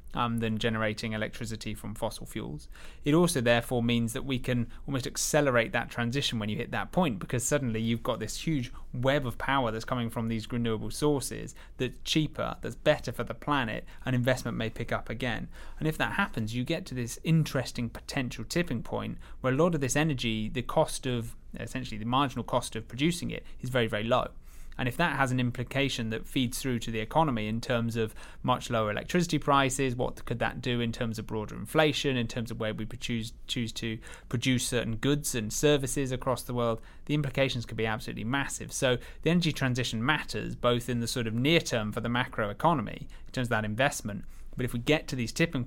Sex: male